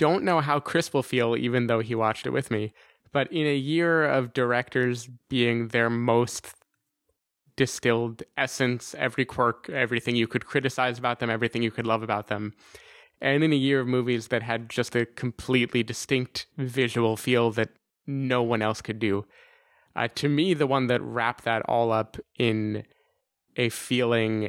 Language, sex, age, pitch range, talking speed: English, male, 20-39, 110-130 Hz, 175 wpm